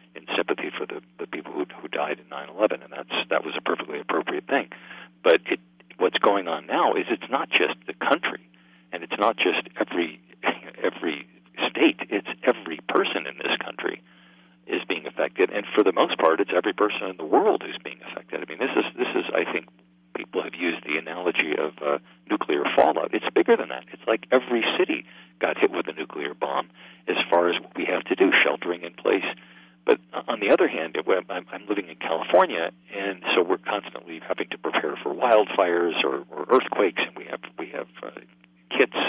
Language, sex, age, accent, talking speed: English, male, 50-69, American, 205 wpm